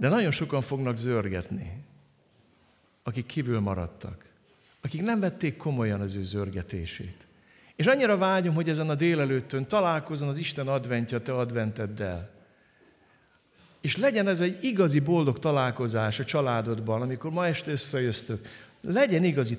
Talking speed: 130 wpm